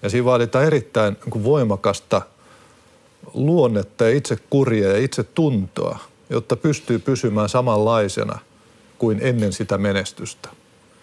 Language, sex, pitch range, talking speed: Finnish, male, 105-125 Hz, 110 wpm